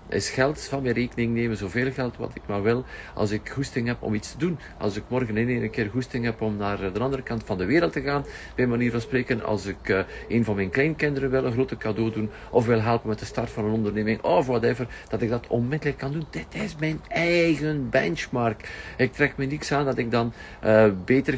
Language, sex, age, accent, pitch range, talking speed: Dutch, male, 50-69, Swiss, 105-130 Hz, 240 wpm